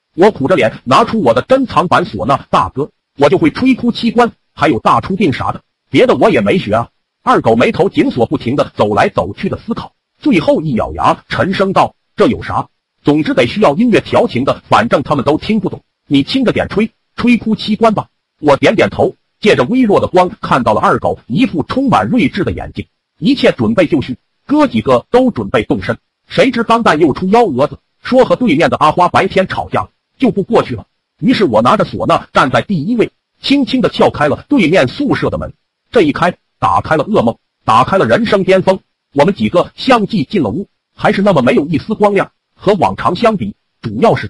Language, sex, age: Chinese, male, 50-69